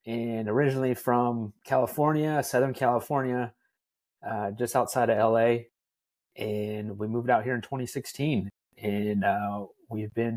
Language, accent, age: English, American, 30-49